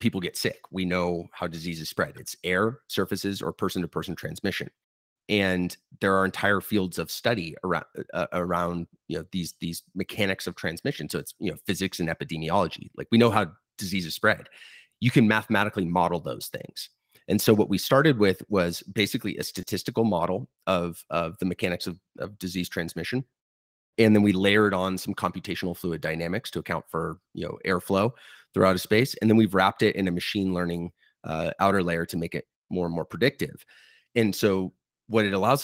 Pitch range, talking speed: 85-105 Hz, 190 wpm